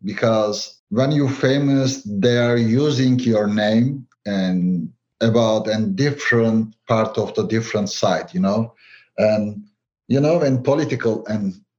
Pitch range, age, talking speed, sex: 115-135 Hz, 50-69, 135 wpm, male